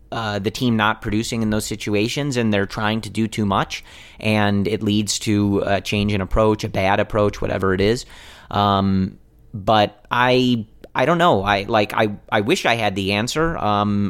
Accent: American